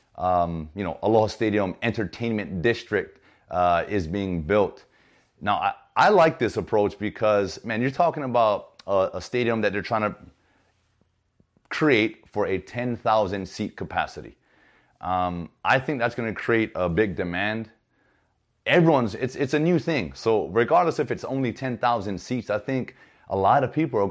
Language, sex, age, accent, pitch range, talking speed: English, male, 30-49, American, 95-125 Hz, 160 wpm